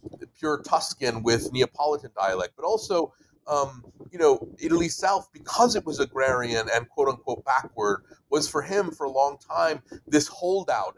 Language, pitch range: English, 120-155 Hz